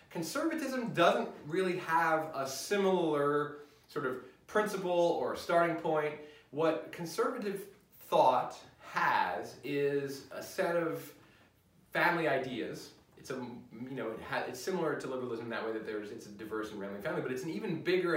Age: 30-49